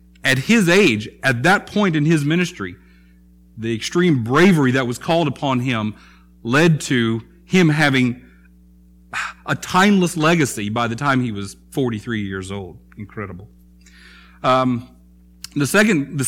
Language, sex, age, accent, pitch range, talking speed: English, male, 40-59, American, 115-155 Hz, 130 wpm